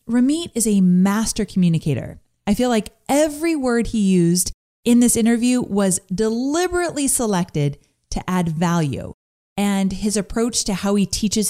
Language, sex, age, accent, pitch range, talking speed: English, female, 30-49, American, 170-235 Hz, 145 wpm